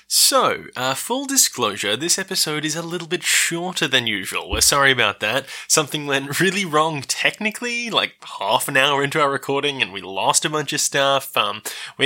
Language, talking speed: English, 190 wpm